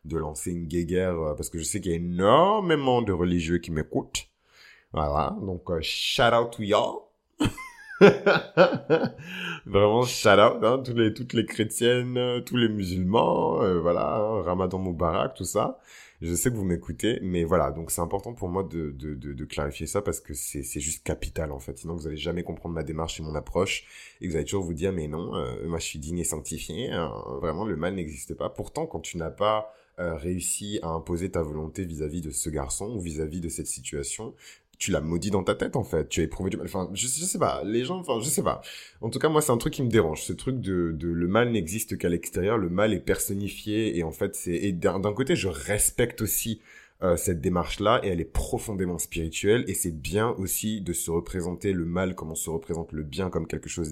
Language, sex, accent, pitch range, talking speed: French, male, French, 80-105 Hz, 225 wpm